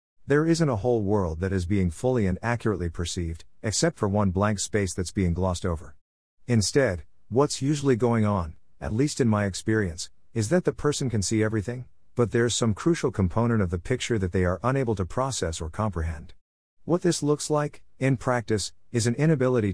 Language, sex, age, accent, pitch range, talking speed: English, male, 50-69, American, 90-120 Hz, 190 wpm